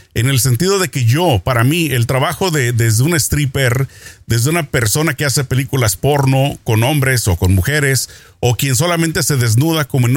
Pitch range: 115-160 Hz